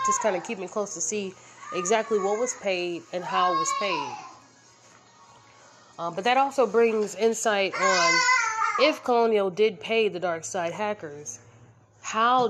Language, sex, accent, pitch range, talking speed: English, female, American, 170-220 Hz, 155 wpm